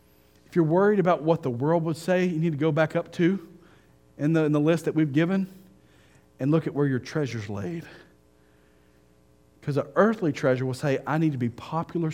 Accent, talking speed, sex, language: American, 210 wpm, male, English